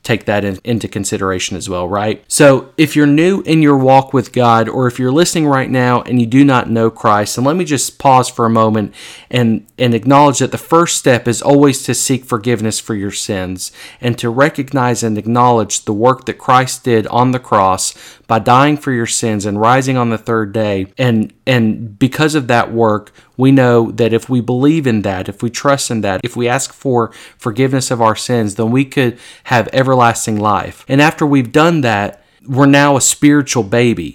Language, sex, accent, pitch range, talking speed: English, male, American, 110-135 Hz, 205 wpm